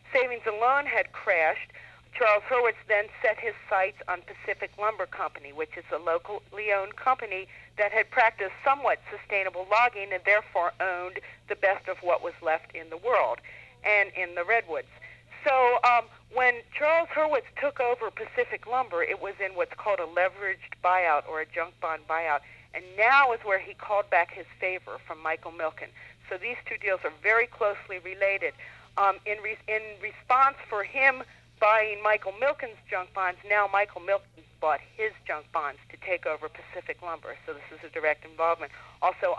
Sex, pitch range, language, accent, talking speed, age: female, 170-230 Hz, English, American, 175 wpm, 50-69